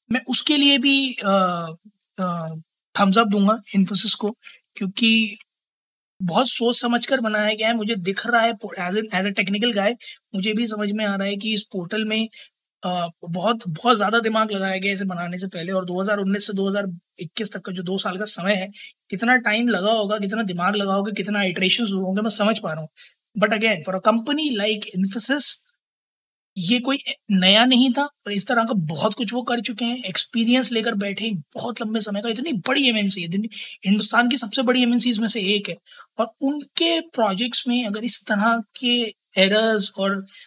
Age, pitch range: 20-39, 195-235 Hz